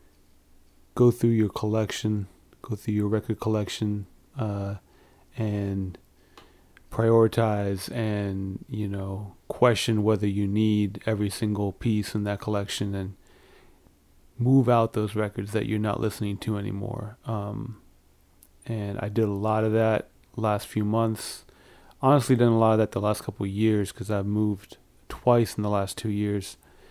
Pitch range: 100-115 Hz